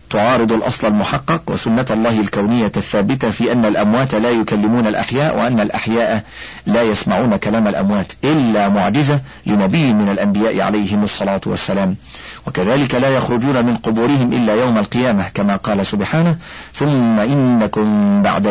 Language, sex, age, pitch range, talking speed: Arabic, male, 50-69, 95-135 Hz, 135 wpm